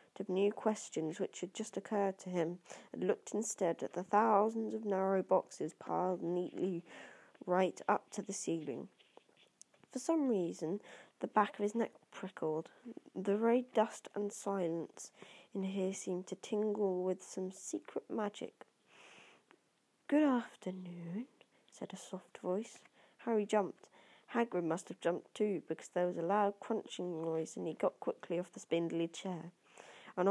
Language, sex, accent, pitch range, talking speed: English, female, British, 175-210 Hz, 150 wpm